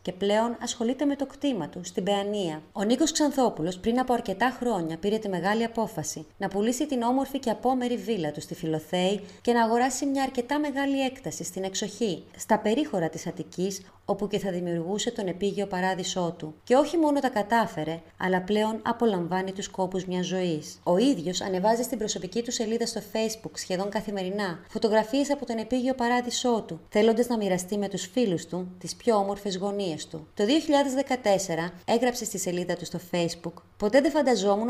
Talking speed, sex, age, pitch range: 180 wpm, female, 30-49, 180-235 Hz